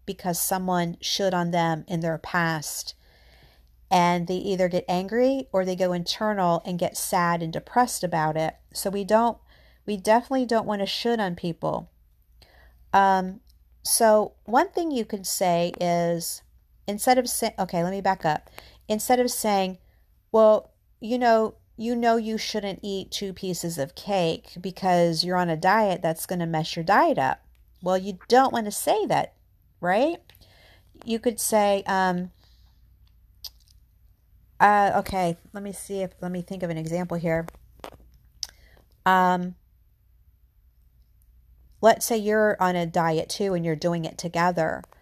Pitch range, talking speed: 165-210 Hz, 155 wpm